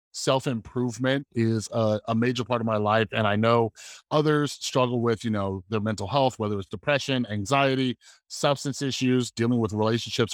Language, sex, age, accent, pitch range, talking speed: English, male, 30-49, American, 110-140 Hz, 170 wpm